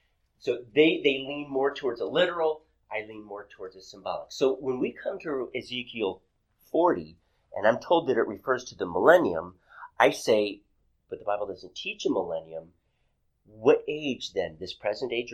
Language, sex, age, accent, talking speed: English, male, 30-49, American, 175 wpm